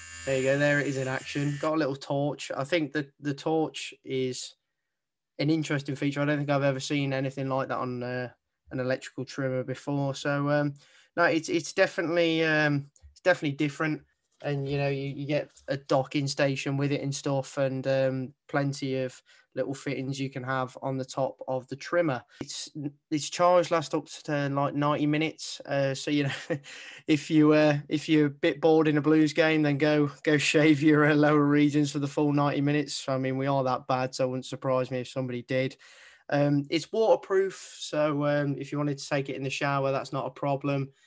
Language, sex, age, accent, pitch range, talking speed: English, male, 20-39, British, 135-150 Hz, 215 wpm